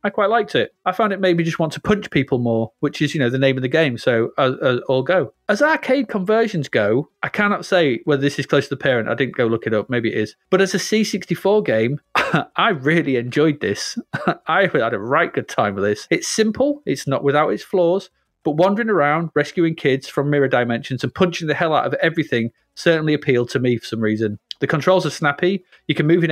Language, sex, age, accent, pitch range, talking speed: English, male, 30-49, British, 130-180 Hz, 240 wpm